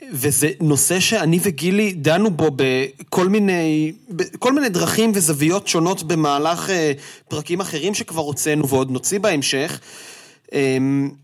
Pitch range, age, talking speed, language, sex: 145-185 Hz, 30-49, 125 wpm, Hebrew, male